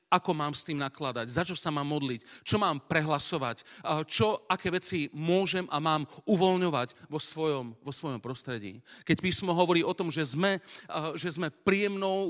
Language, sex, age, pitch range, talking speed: Slovak, male, 40-59, 130-170 Hz, 170 wpm